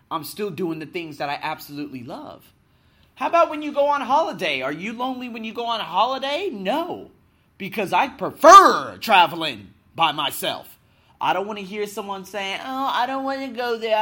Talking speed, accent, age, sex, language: 195 wpm, American, 30-49, male, English